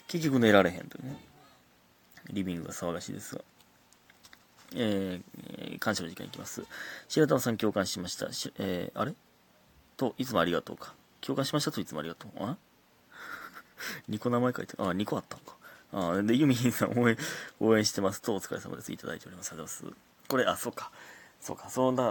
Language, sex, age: Japanese, male, 30-49